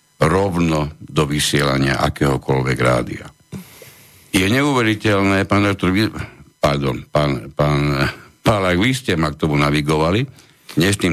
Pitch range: 80-115 Hz